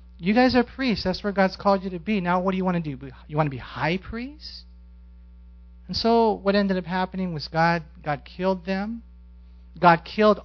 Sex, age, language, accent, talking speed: male, 40-59, English, American, 210 wpm